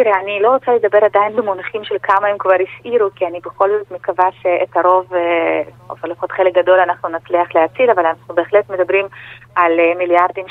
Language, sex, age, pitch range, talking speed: Hebrew, female, 30-49, 175-215 Hz, 185 wpm